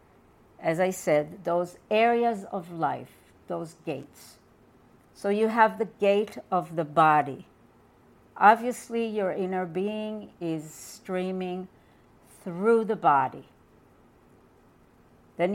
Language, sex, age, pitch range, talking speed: English, female, 60-79, 165-210 Hz, 105 wpm